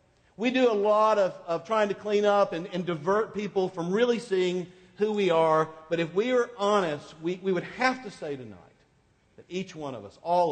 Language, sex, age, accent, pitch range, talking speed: English, male, 50-69, American, 155-215 Hz, 215 wpm